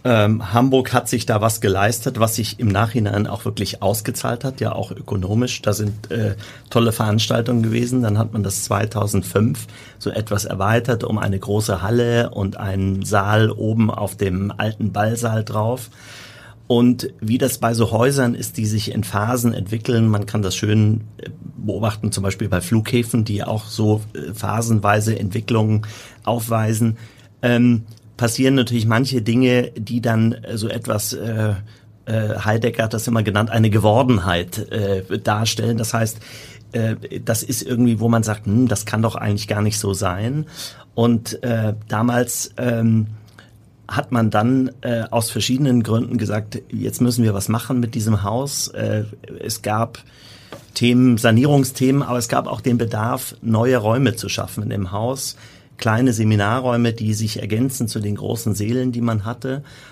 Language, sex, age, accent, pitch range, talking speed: German, male, 30-49, German, 105-120 Hz, 160 wpm